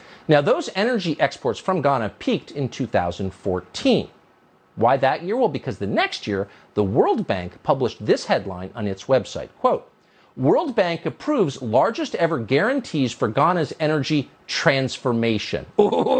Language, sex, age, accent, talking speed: English, male, 50-69, American, 135 wpm